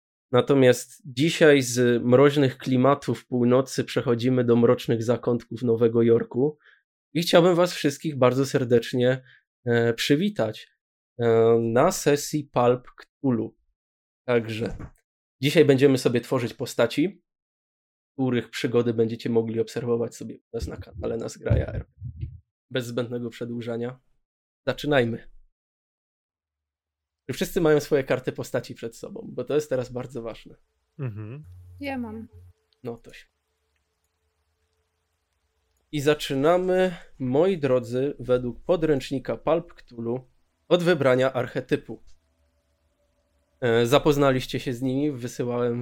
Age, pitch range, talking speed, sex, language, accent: 20-39, 115-135 Hz, 105 wpm, male, Polish, native